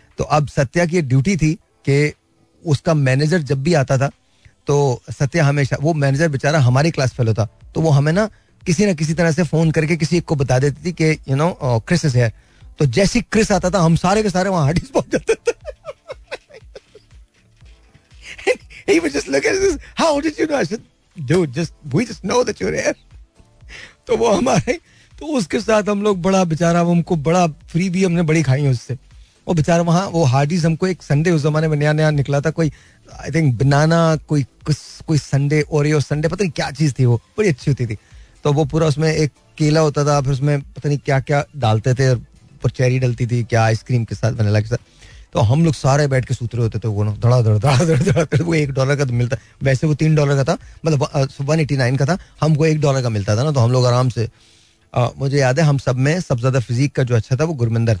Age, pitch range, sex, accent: 30-49, 130-165 Hz, male, native